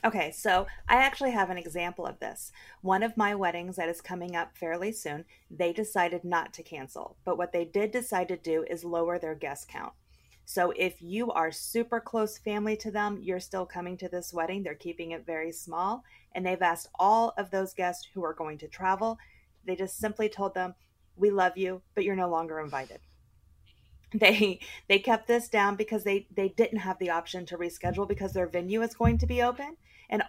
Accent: American